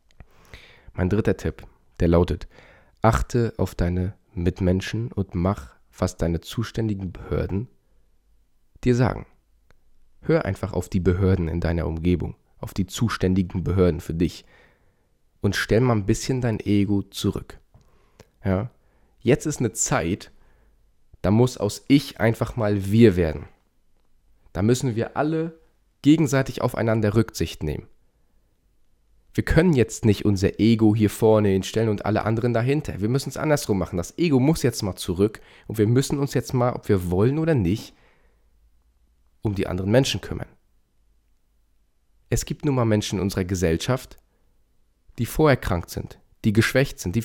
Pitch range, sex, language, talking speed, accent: 90-125 Hz, male, German, 145 wpm, German